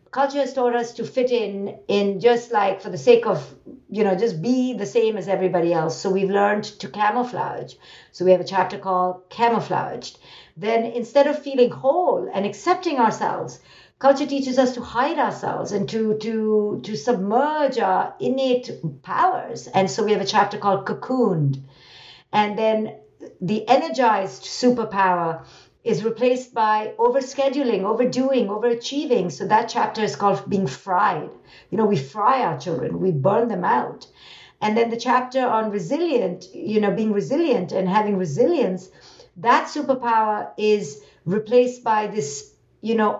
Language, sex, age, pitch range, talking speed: English, female, 50-69, 195-250 Hz, 160 wpm